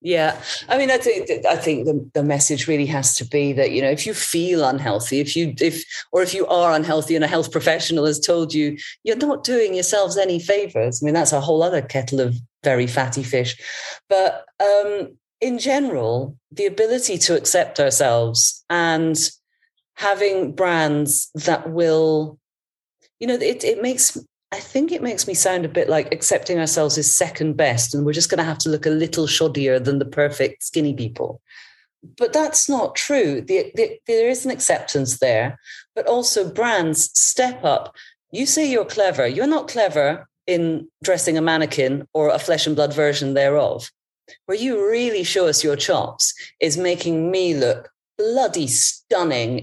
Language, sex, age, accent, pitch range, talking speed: English, female, 40-59, British, 145-205 Hz, 180 wpm